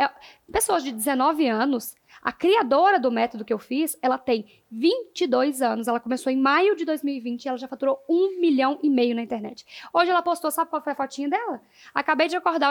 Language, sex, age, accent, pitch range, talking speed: Portuguese, female, 10-29, Brazilian, 260-350 Hz, 200 wpm